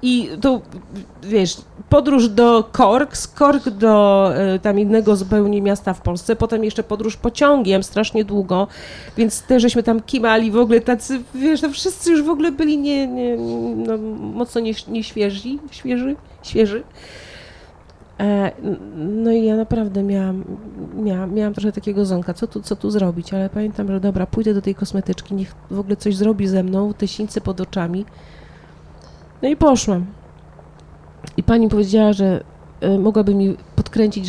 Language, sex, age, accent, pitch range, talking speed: Polish, female, 40-59, native, 190-235 Hz, 160 wpm